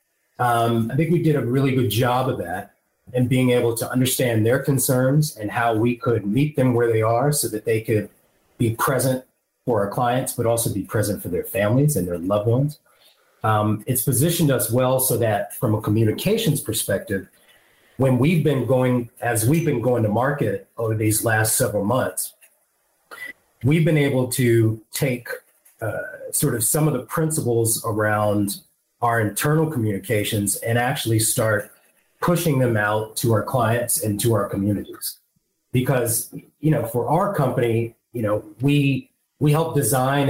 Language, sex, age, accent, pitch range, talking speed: English, male, 30-49, American, 115-145 Hz, 170 wpm